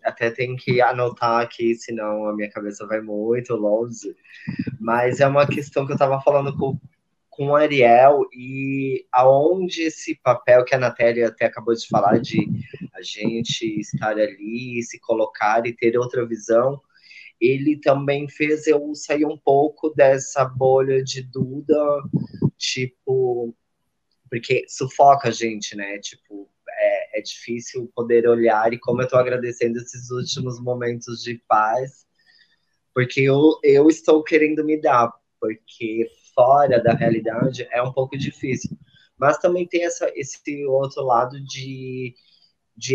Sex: male